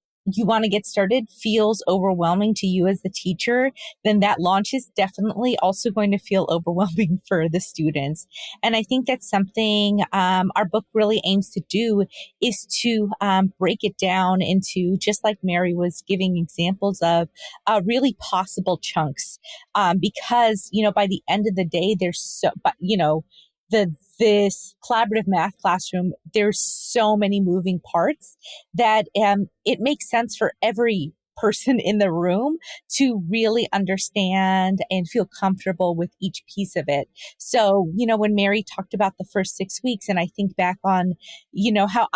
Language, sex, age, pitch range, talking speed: English, female, 30-49, 185-220 Hz, 170 wpm